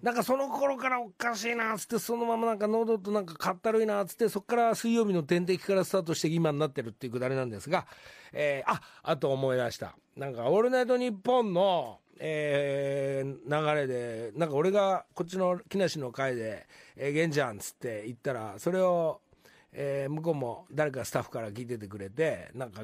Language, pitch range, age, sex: Japanese, 125-190 Hz, 40-59, male